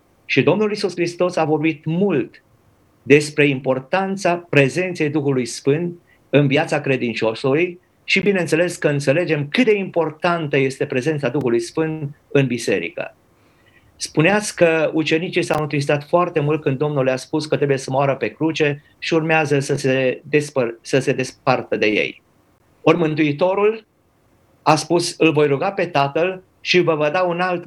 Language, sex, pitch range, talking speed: Romanian, male, 140-175 Hz, 145 wpm